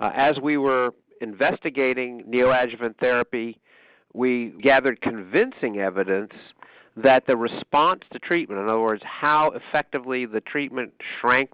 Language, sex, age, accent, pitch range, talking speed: English, male, 50-69, American, 115-145 Hz, 125 wpm